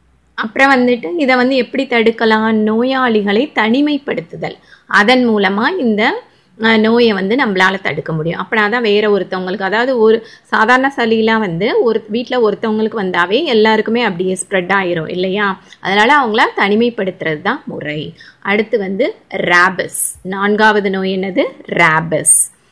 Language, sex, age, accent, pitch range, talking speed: Tamil, female, 20-39, native, 190-235 Hz, 120 wpm